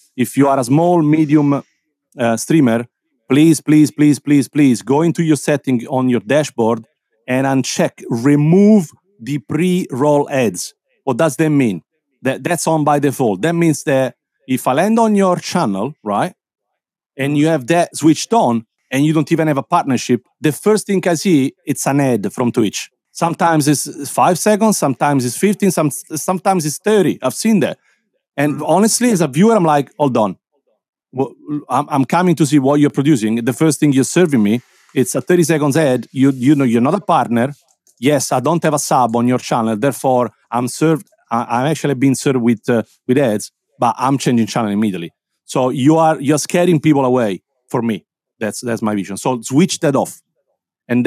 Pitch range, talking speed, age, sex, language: 130-160 Hz, 185 wpm, 40-59, male, English